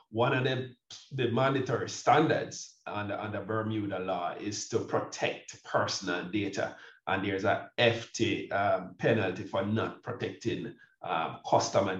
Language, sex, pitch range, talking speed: English, male, 100-120 Hz, 135 wpm